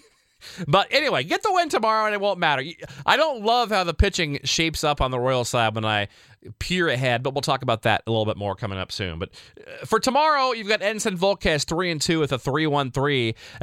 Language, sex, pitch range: English, male, 115-175 Hz